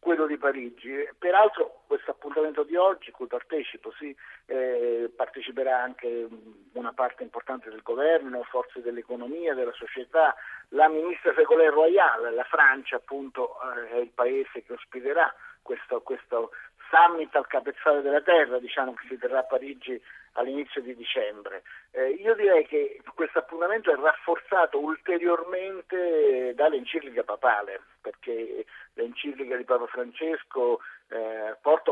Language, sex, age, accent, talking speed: Italian, male, 50-69, native, 130 wpm